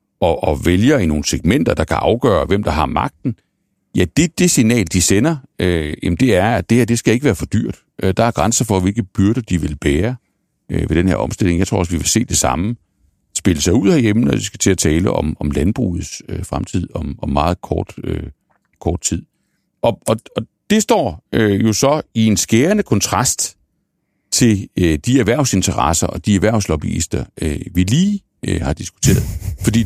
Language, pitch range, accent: Danish, 90-125 Hz, native